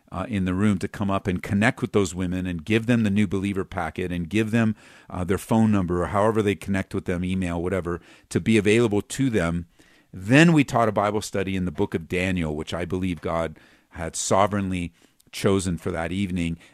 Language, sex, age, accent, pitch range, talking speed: English, male, 50-69, American, 90-120 Hz, 215 wpm